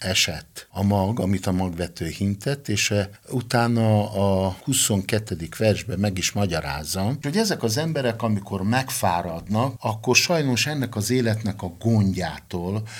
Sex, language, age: male, Hungarian, 50-69